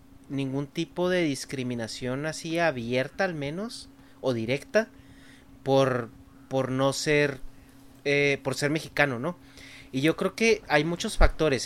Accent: Mexican